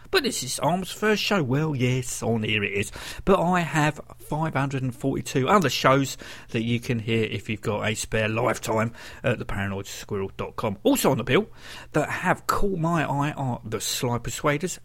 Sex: male